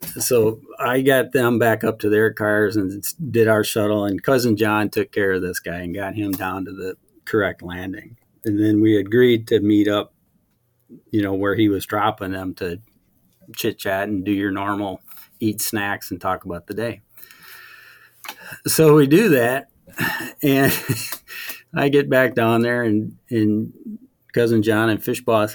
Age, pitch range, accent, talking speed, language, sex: 40-59, 105-125 Hz, American, 170 wpm, English, male